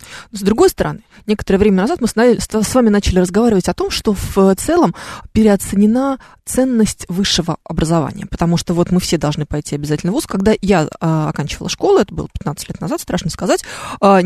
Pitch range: 165-220 Hz